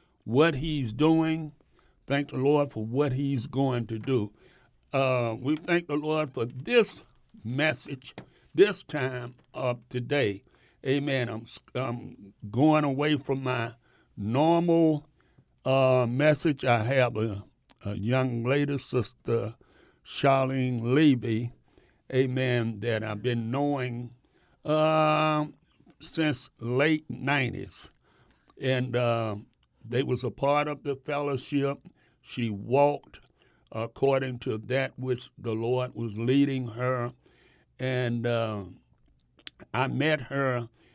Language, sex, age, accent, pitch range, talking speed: English, male, 60-79, American, 120-145 Hz, 115 wpm